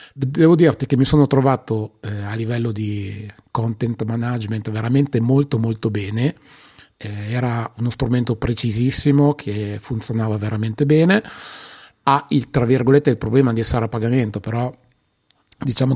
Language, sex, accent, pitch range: Italian, male, native, 110-130 Hz